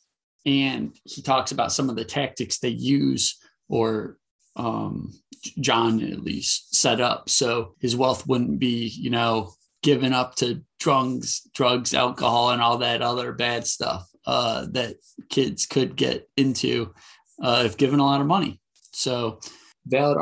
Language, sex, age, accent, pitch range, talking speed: English, male, 30-49, American, 115-135 Hz, 150 wpm